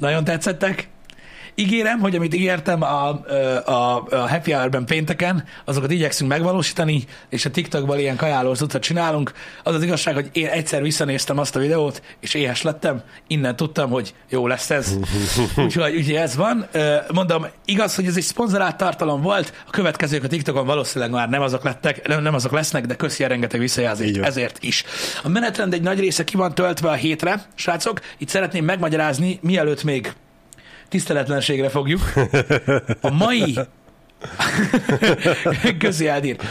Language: Hungarian